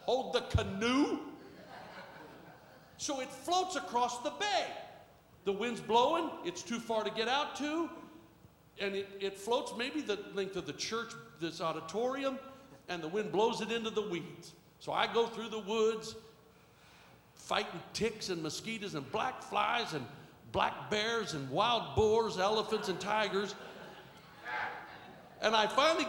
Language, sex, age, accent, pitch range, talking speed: English, male, 60-79, American, 170-235 Hz, 145 wpm